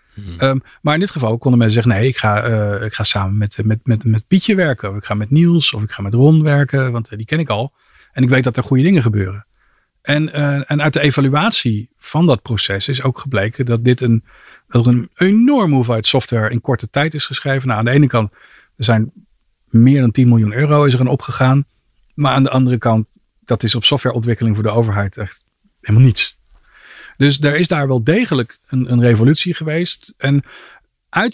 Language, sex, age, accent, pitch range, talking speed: Dutch, male, 40-59, Dutch, 115-145 Hz, 215 wpm